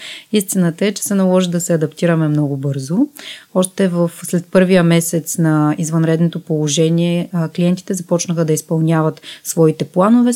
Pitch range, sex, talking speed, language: 165-195 Hz, female, 140 wpm, Bulgarian